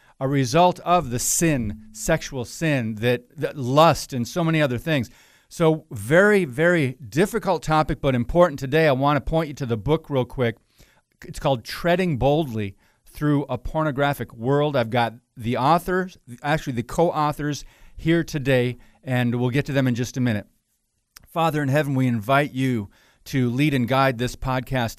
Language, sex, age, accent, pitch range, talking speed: English, male, 50-69, American, 115-145 Hz, 170 wpm